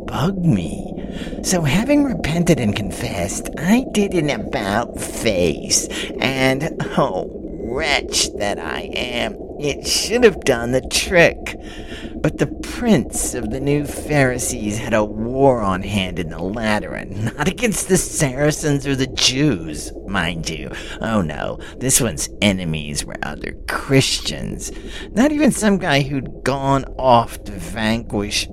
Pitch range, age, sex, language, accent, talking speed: 100-145 Hz, 50-69, male, English, American, 135 wpm